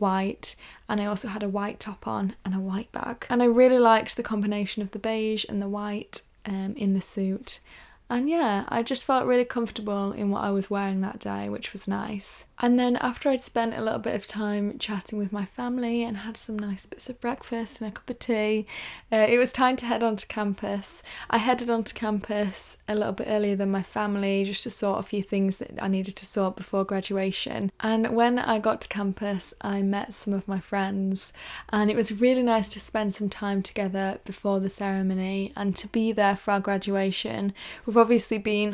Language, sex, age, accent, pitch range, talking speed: English, female, 10-29, British, 195-230 Hz, 220 wpm